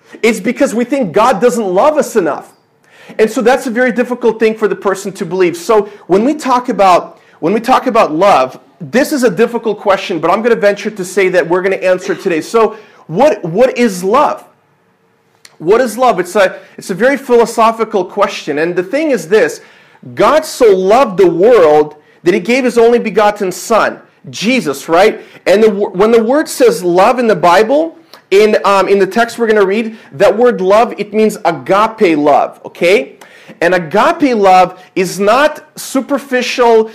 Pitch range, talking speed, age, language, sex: 200-255 Hz, 190 wpm, 40-59, English, male